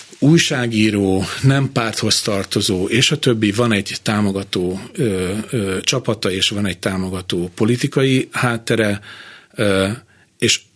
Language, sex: Hungarian, male